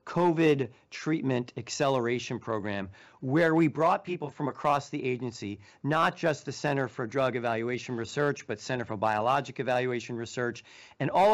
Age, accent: 40-59, American